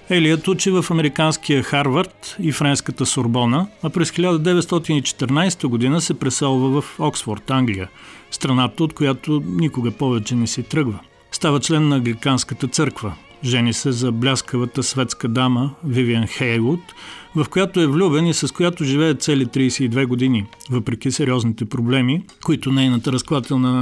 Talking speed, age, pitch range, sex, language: 140 wpm, 40-59, 120-150 Hz, male, Bulgarian